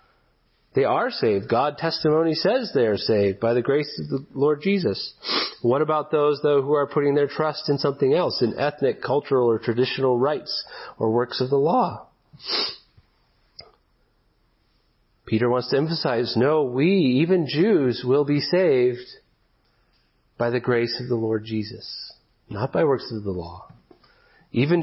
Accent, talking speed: American, 155 wpm